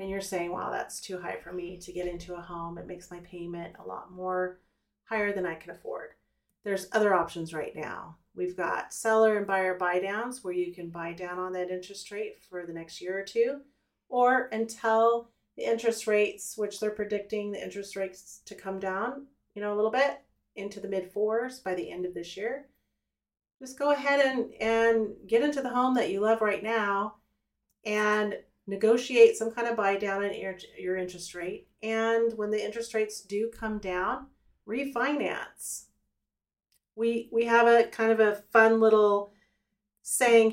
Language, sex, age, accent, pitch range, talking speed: English, female, 40-59, American, 185-225 Hz, 185 wpm